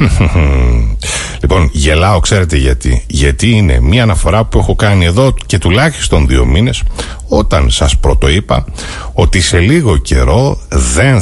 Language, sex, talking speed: Greek, male, 130 wpm